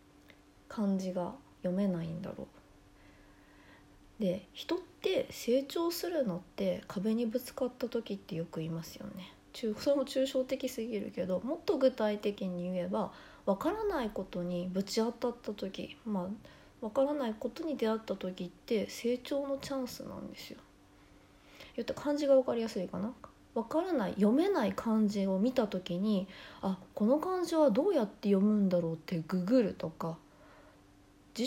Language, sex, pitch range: Japanese, female, 175-255 Hz